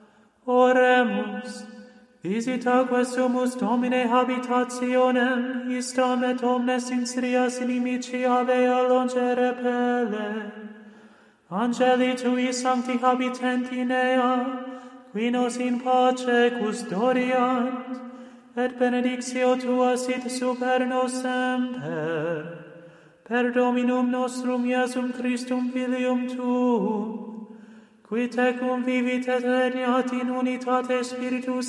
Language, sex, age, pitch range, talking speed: English, male, 30-49, 240-255 Hz, 85 wpm